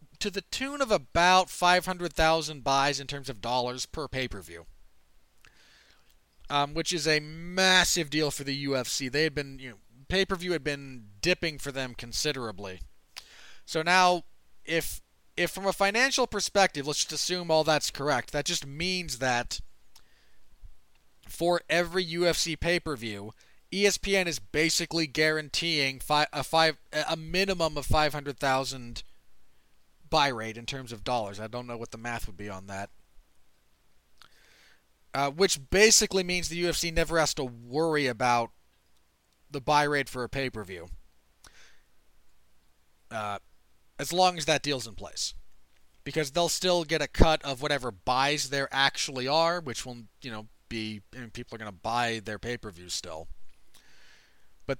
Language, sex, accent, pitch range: English, male, American, 110-165 Hz